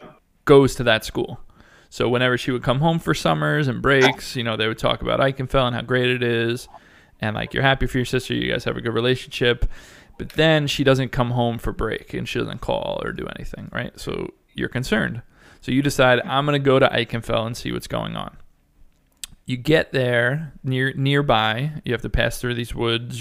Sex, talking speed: male, 215 wpm